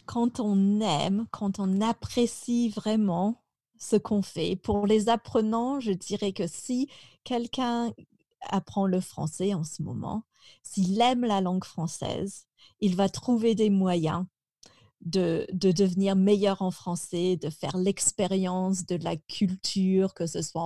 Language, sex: French, female